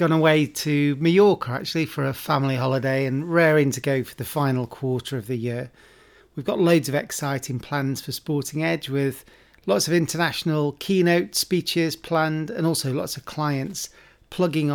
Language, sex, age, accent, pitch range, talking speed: English, male, 40-59, British, 135-160 Hz, 170 wpm